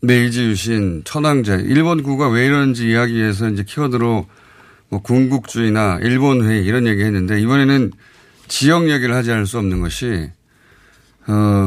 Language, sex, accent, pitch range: Korean, male, native, 105-140 Hz